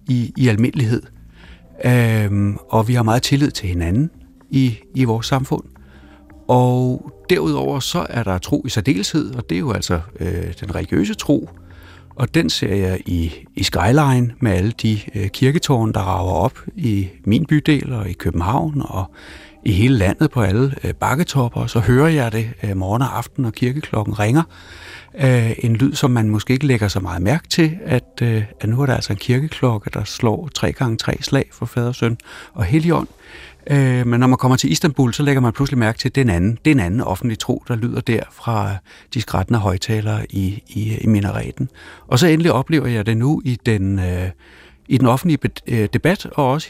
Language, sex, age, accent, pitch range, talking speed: Danish, male, 60-79, native, 100-130 Hz, 190 wpm